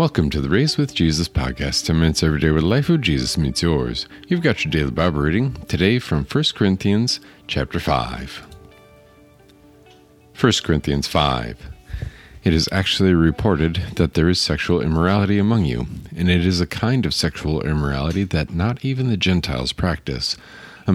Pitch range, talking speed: 75-105 Hz, 170 wpm